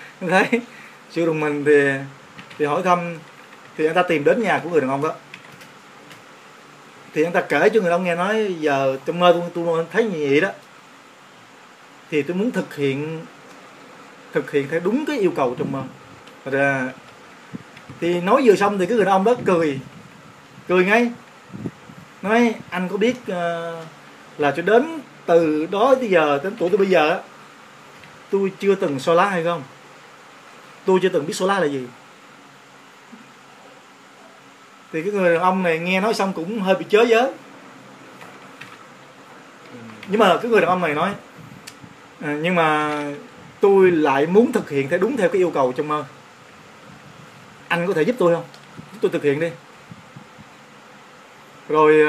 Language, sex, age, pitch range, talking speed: Vietnamese, male, 20-39, 155-200 Hz, 170 wpm